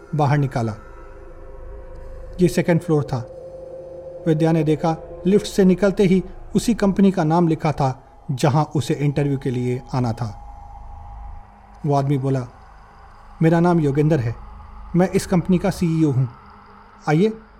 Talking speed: 135 wpm